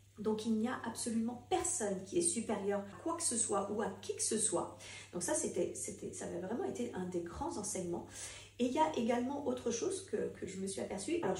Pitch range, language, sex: 190-250 Hz, French, female